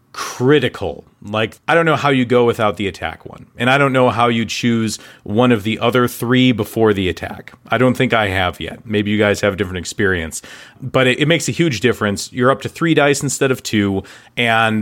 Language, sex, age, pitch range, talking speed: English, male, 40-59, 110-140 Hz, 225 wpm